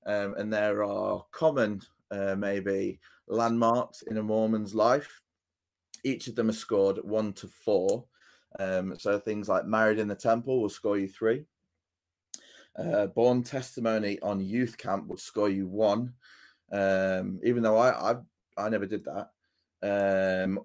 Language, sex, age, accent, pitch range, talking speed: English, male, 20-39, British, 100-120 Hz, 150 wpm